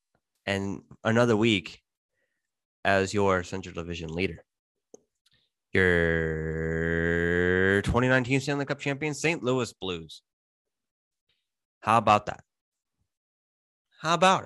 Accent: American